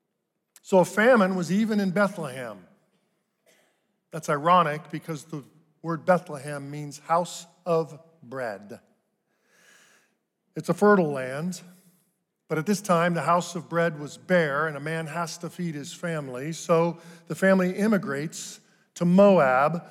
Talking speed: 135 wpm